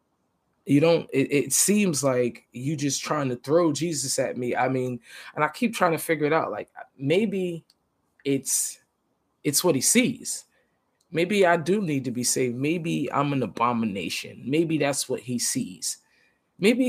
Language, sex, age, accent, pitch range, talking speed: English, male, 20-39, American, 135-180 Hz, 170 wpm